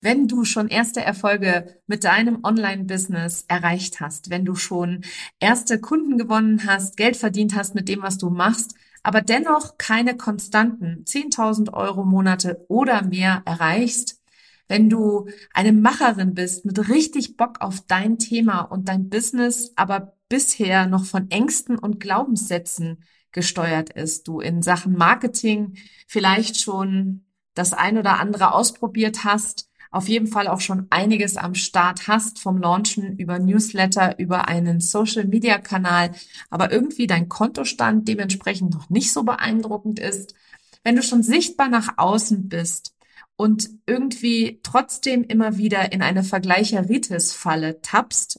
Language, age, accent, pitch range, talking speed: German, 50-69, German, 185-225 Hz, 140 wpm